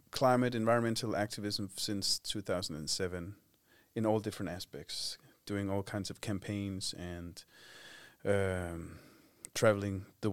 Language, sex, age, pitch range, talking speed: Swedish, male, 30-49, 95-110 Hz, 120 wpm